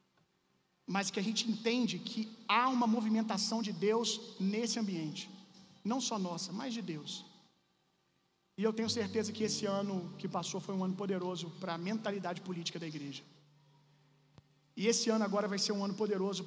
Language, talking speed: Gujarati, 170 wpm